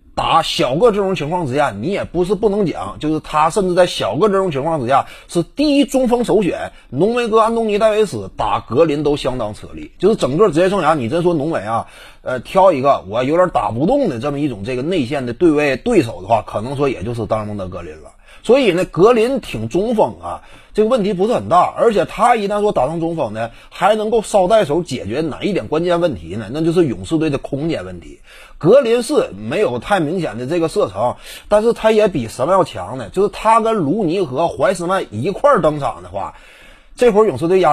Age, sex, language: 30-49, male, Chinese